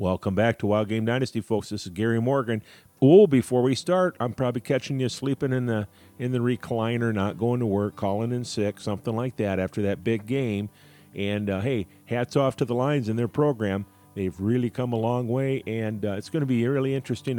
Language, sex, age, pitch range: English, male, 50-69, 100-125 Hz